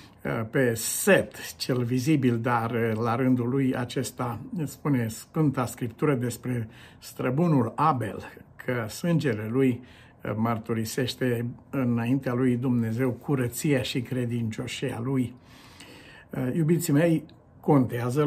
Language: Romanian